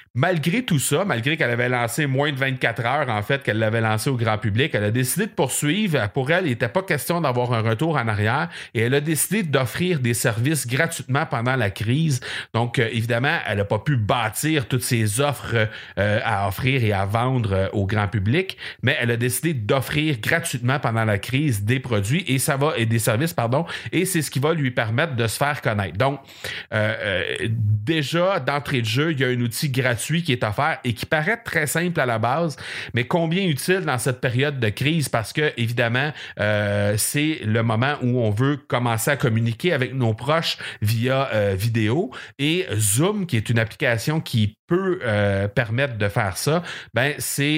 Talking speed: 205 wpm